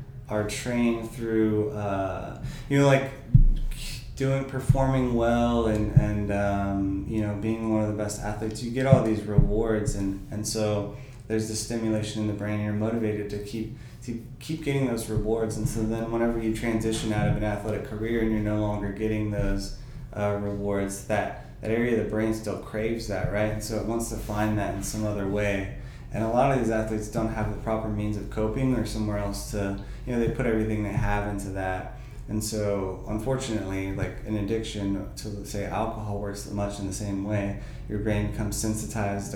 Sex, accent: male, American